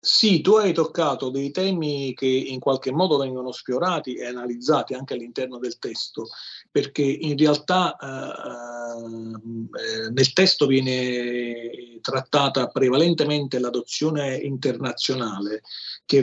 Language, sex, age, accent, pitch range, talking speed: Italian, male, 40-59, native, 125-155 Hz, 115 wpm